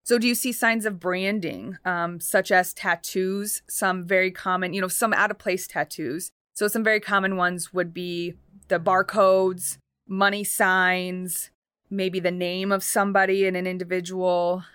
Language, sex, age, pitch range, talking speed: English, female, 20-39, 180-200 Hz, 155 wpm